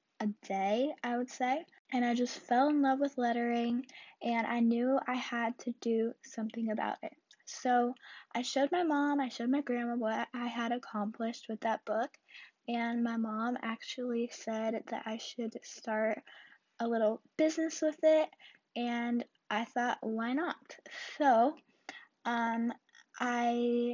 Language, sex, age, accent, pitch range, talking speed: English, female, 10-29, American, 230-265 Hz, 155 wpm